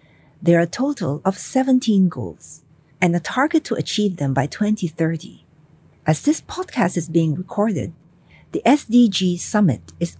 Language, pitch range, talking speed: English, 155-225 Hz, 145 wpm